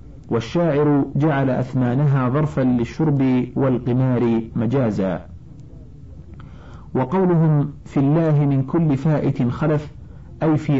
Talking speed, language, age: 90 wpm, Arabic, 50-69